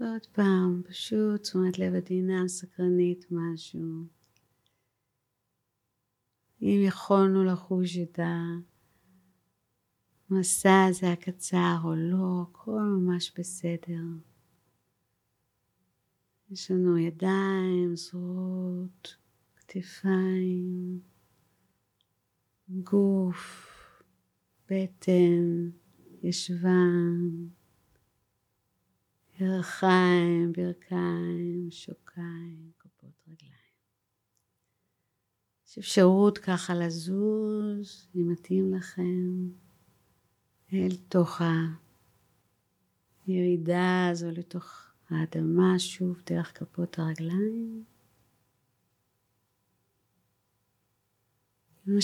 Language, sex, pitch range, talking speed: Hebrew, female, 140-185 Hz, 60 wpm